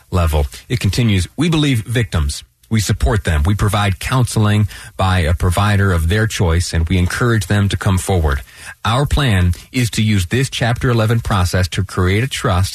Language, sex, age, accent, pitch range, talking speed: English, male, 30-49, American, 90-115 Hz, 180 wpm